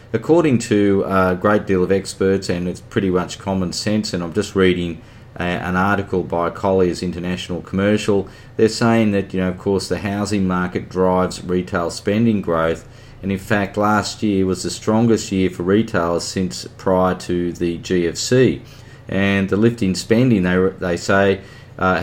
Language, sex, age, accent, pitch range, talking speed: English, male, 30-49, Australian, 90-105 Hz, 165 wpm